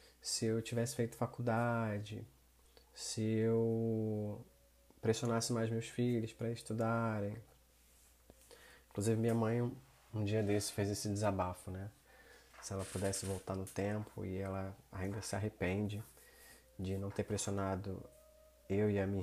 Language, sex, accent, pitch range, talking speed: Portuguese, male, Brazilian, 95-115 Hz, 130 wpm